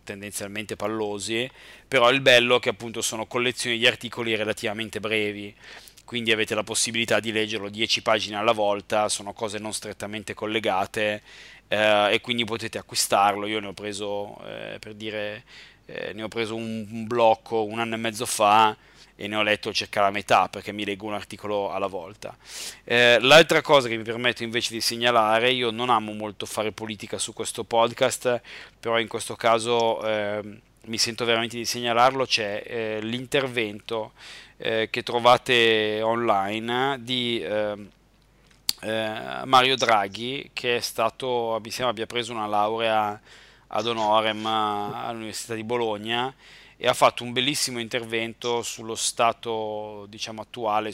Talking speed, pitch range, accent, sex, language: 150 wpm, 105-120 Hz, native, male, Italian